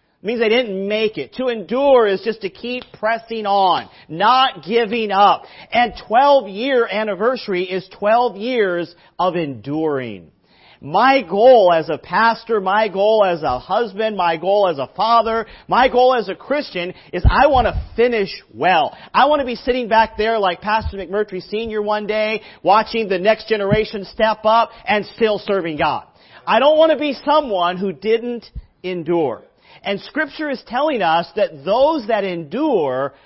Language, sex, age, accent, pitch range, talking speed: English, male, 40-59, American, 170-225 Hz, 170 wpm